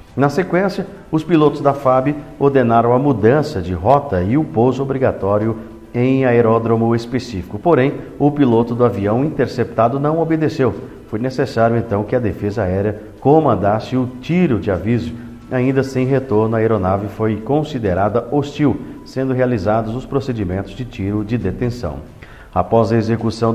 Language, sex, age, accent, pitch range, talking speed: Portuguese, male, 50-69, Brazilian, 110-135 Hz, 145 wpm